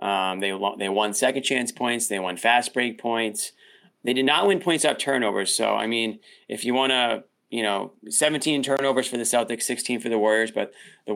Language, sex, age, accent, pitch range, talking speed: English, male, 20-39, American, 105-130 Hz, 210 wpm